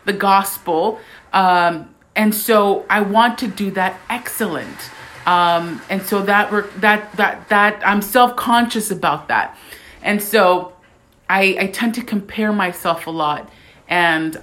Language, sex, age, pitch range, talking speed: English, female, 30-49, 170-205 Hz, 145 wpm